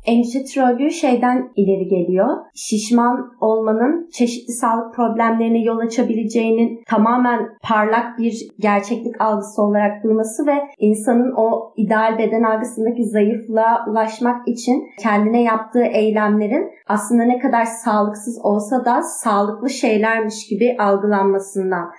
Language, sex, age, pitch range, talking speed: Turkish, female, 30-49, 205-235 Hz, 110 wpm